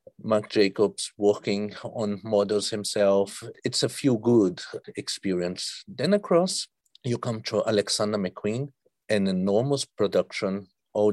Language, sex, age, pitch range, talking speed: English, male, 50-69, 105-125 Hz, 120 wpm